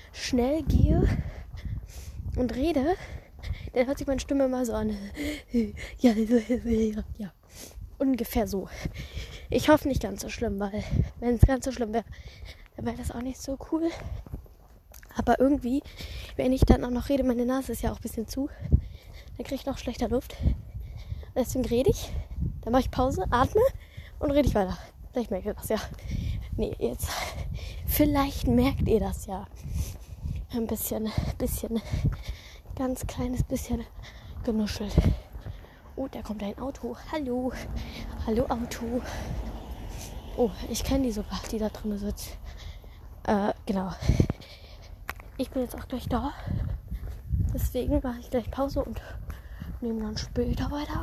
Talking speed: 150 wpm